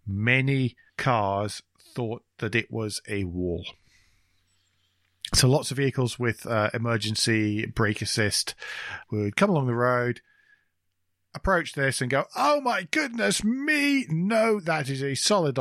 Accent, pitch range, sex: British, 100-130 Hz, male